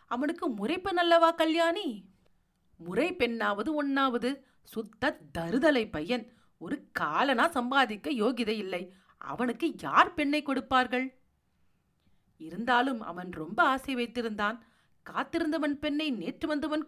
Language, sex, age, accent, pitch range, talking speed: Tamil, female, 40-59, native, 235-315 Hz, 105 wpm